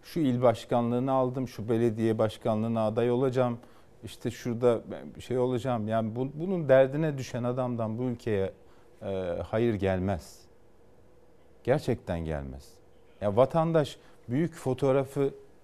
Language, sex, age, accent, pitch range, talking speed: Turkish, male, 50-69, native, 110-140 Hz, 120 wpm